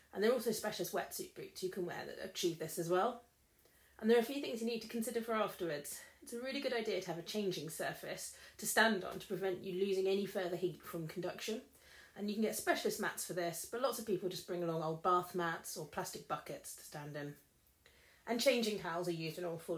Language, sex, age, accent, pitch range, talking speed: English, female, 30-49, British, 175-220 Hz, 245 wpm